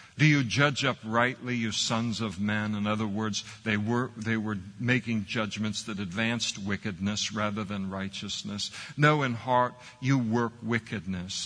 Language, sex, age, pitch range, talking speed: English, male, 60-79, 105-120 Hz, 155 wpm